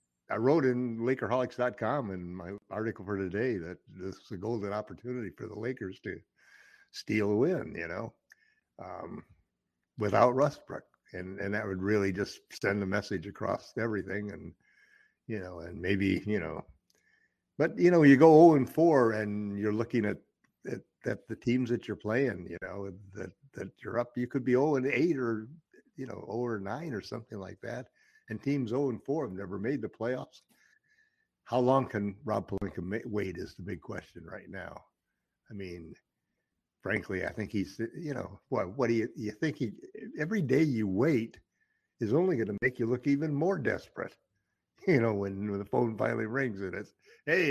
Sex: male